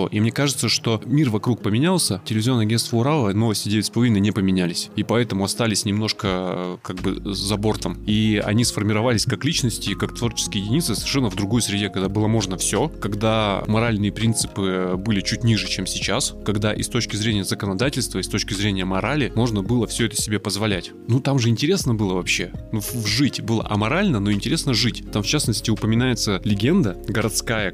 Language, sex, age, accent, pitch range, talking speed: Russian, male, 20-39, native, 100-115 Hz, 180 wpm